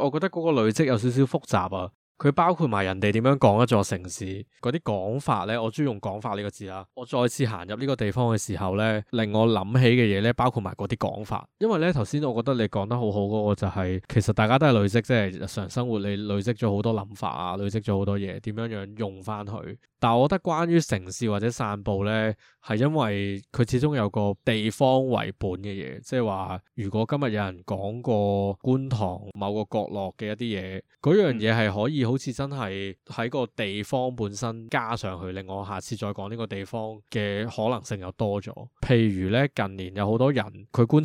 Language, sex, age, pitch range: Chinese, male, 20-39, 100-125 Hz